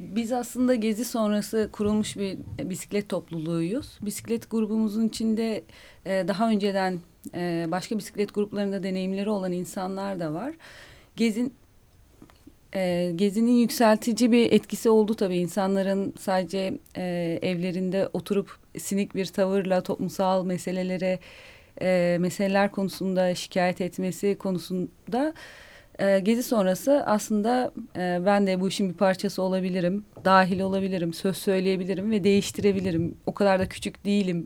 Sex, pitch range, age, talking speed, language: female, 180-215 Hz, 30-49, 110 wpm, Turkish